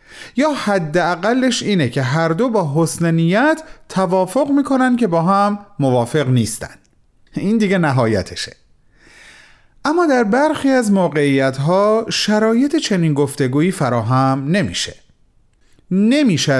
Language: Persian